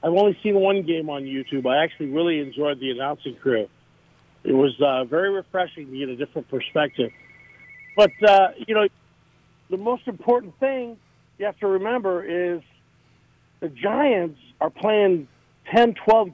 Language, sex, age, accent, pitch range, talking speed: English, male, 50-69, American, 150-200 Hz, 160 wpm